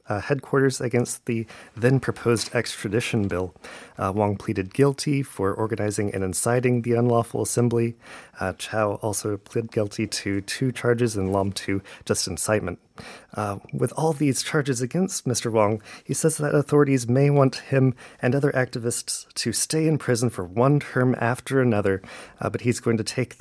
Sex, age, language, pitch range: male, 30-49, Korean, 105-130 Hz